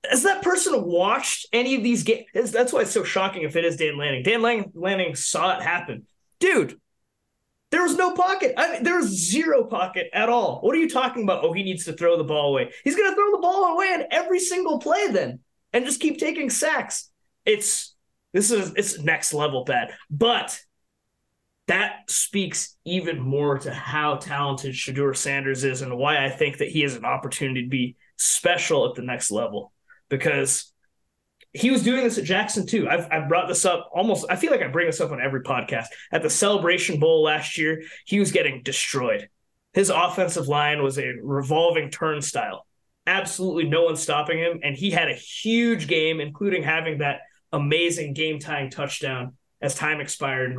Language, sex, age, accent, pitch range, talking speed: English, male, 20-39, American, 145-235 Hz, 185 wpm